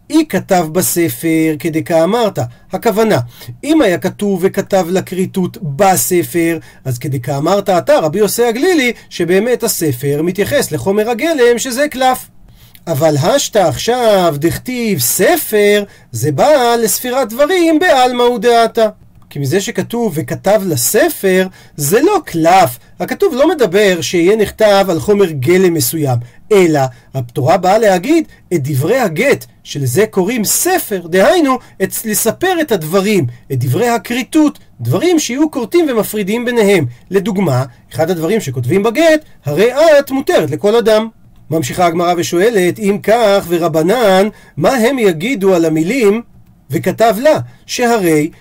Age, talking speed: 40-59, 125 wpm